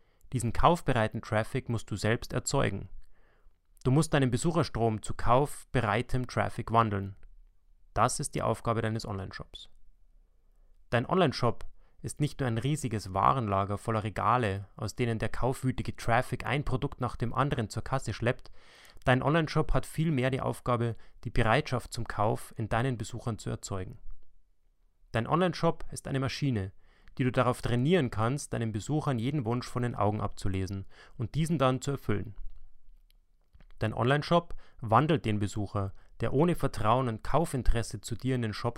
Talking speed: 150 wpm